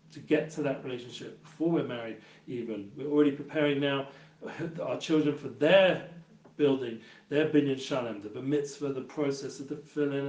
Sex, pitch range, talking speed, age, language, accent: male, 135-155 Hz, 165 wpm, 40-59, English, British